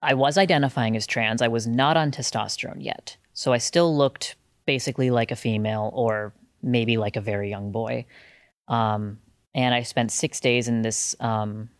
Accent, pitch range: American, 115-130 Hz